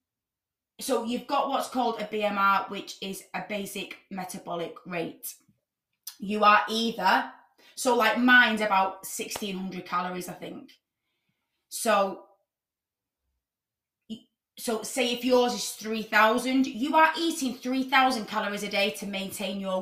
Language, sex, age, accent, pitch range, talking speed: English, female, 20-39, British, 200-255 Hz, 125 wpm